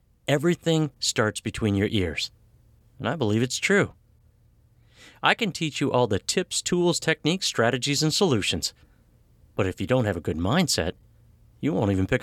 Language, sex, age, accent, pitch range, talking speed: English, male, 50-69, American, 105-140 Hz, 165 wpm